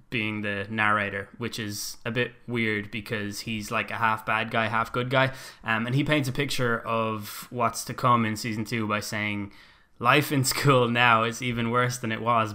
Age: 10-29